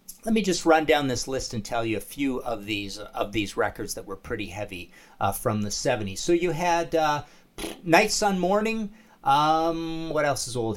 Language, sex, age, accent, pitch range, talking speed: English, male, 50-69, American, 115-160 Hz, 205 wpm